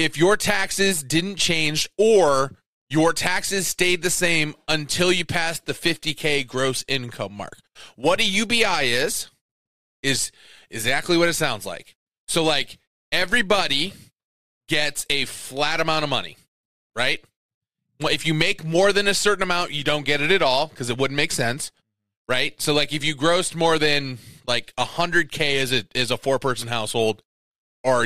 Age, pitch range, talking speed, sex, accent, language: 20-39, 125-170 Hz, 160 wpm, male, American, English